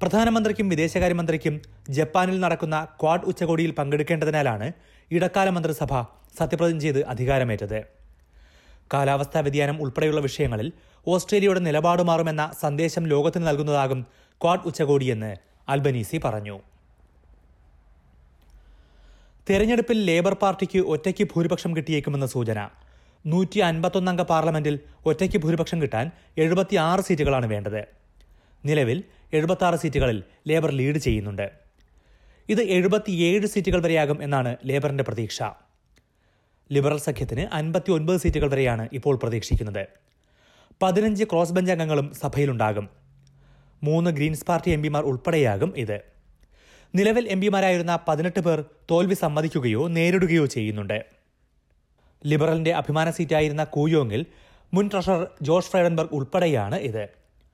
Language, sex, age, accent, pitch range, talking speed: Malayalam, male, 30-49, native, 120-175 Hz, 90 wpm